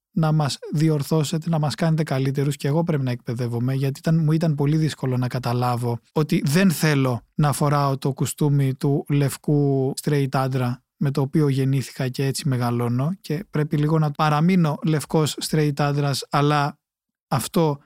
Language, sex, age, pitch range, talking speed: Greek, male, 20-39, 135-165 Hz, 160 wpm